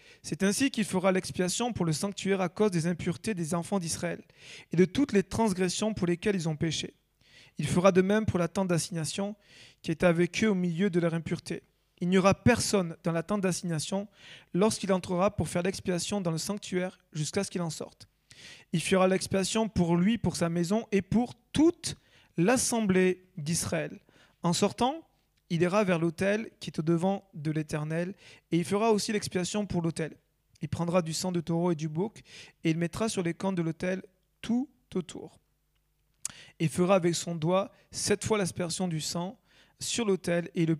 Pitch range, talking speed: 165-195 Hz, 190 wpm